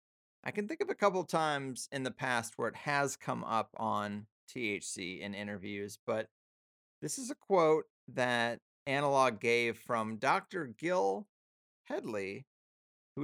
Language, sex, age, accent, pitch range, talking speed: English, male, 30-49, American, 110-160 Hz, 150 wpm